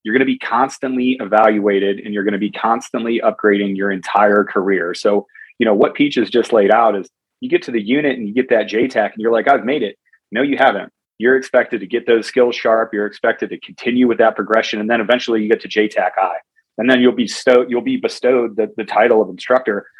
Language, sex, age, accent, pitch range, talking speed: English, male, 30-49, American, 110-135 Hz, 235 wpm